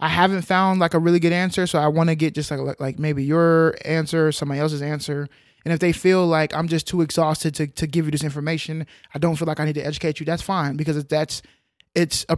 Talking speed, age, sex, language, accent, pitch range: 260 wpm, 20-39, male, English, American, 150-170 Hz